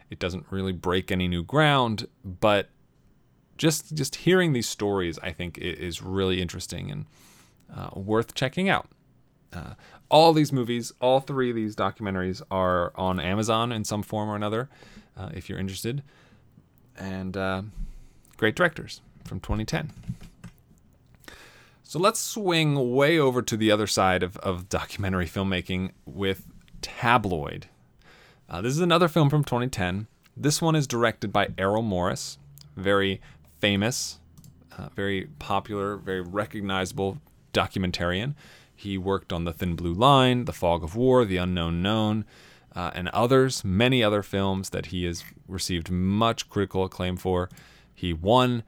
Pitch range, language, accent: 95-120 Hz, English, American